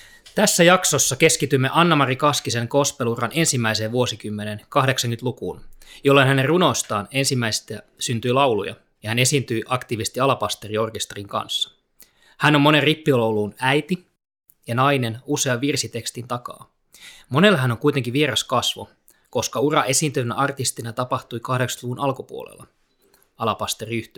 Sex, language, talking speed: male, Finnish, 110 wpm